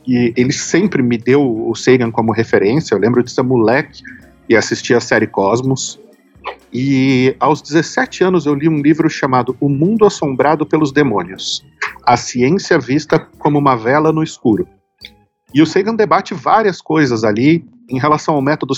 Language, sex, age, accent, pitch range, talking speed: Portuguese, male, 50-69, Brazilian, 125-155 Hz, 165 wpm